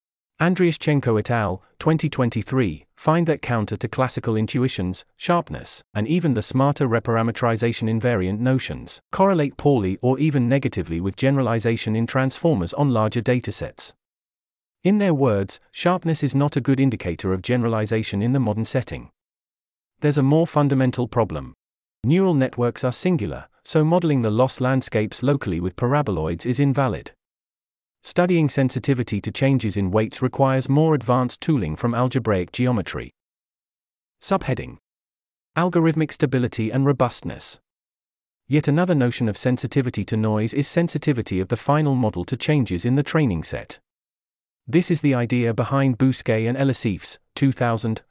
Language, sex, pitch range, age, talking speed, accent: English, male, 110-140 Hz, 40-59, 135 wpm, British